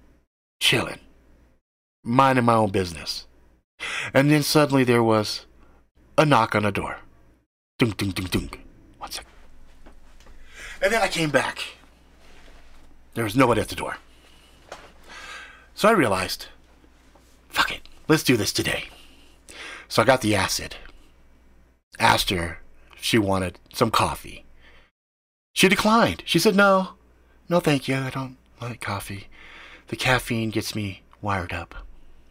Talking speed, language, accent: 135 wpm, English, American